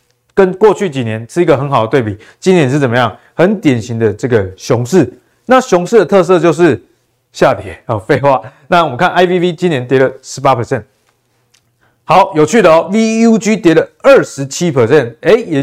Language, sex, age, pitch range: Chinese, male, 20-39, 120-175 Hz